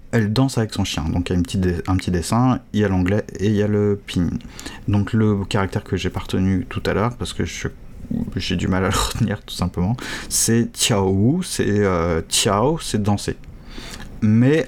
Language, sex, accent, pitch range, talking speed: French, male, French, 95-115 Hz, 225 wpm